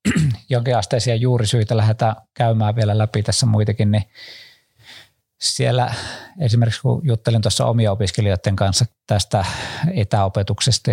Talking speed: 105 wpm